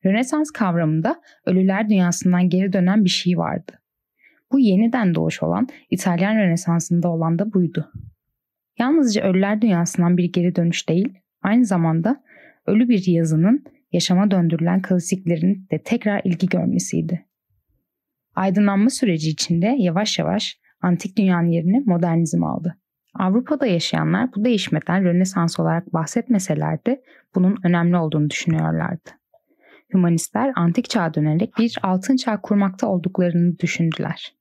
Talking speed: 120 wpm